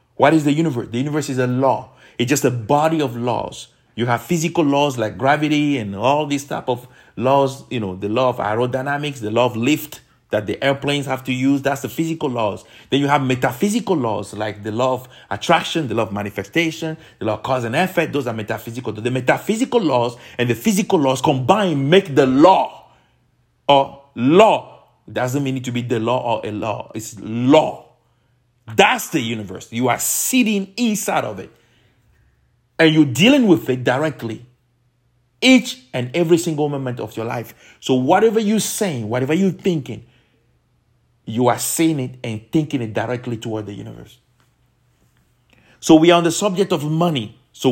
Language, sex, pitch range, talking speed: English, male, 120-155 Hz, 185 wpm